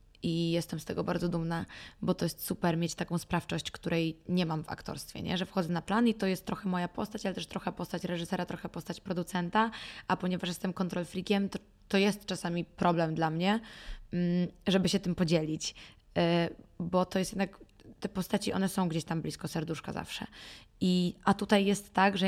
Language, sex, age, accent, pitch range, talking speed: Polish, female, 20-39, native, 170-190 Hz, 190 wpm